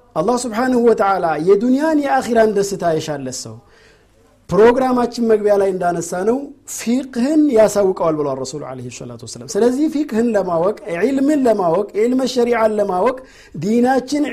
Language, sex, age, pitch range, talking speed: Amharic, male, 50-69, 165-240 Hz, 105 wpm